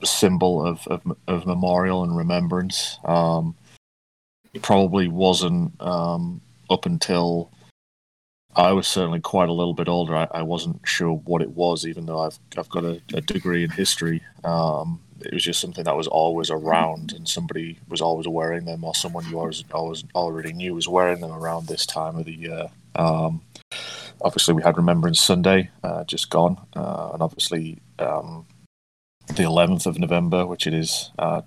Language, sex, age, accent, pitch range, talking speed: English, male, 30-49, British, 80-90 Hz, 175 wpm